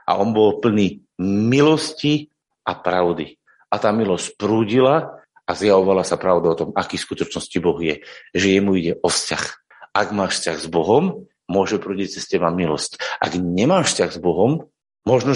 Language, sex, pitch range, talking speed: Slovak, male, 95-115 Hz, 165 wpm